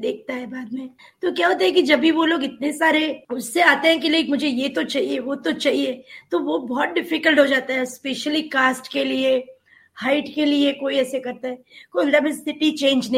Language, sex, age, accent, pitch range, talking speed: Hindi, female, 20-39, native, 245-295 Hz, 145 wpm